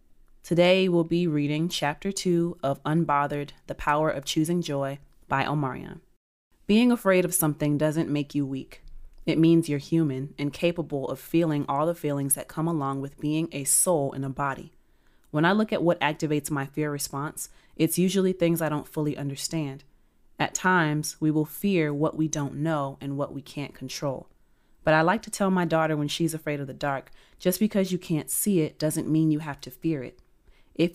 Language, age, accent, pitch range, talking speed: English, 30-49, American, 140-165 Hz, 195 wpm